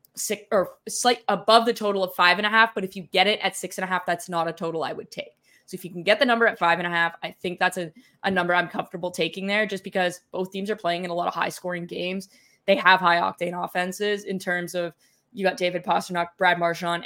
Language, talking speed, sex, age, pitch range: English, 270 wpm, female, 10-29, 170-195 Hz